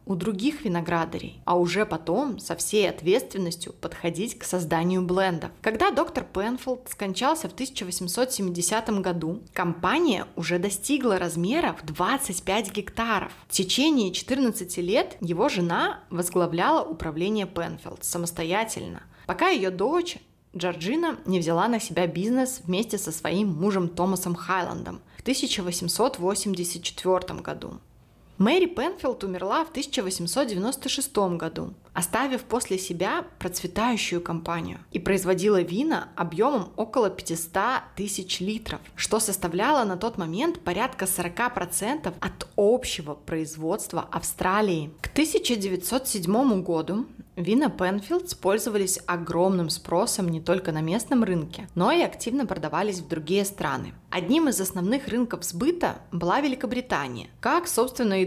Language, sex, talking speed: Russian, female, 115 wpm